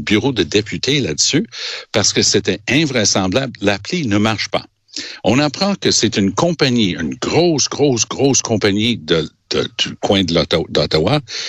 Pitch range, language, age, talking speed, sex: 95-125 Hz, French, 60-79, 155 wpm, male